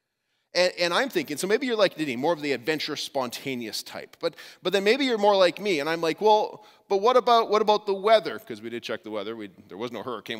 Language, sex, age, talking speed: English, male, 30-49, 255 wpm